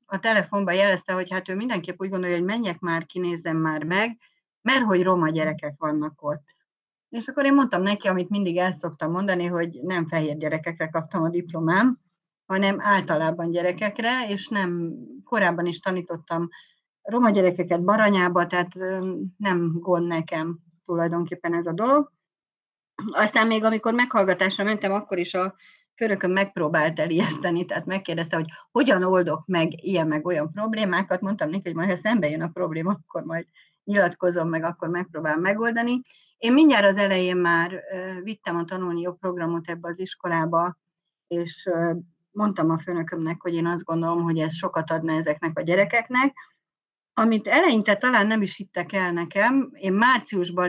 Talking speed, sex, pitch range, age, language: 155 wpm, female, 170-200 Hz, 30-49, Hungarian